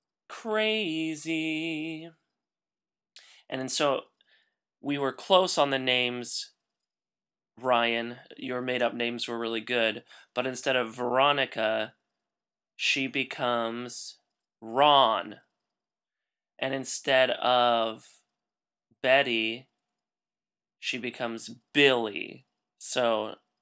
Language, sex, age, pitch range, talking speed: English, male, 30-49, 115-160 Hz, 80 wpm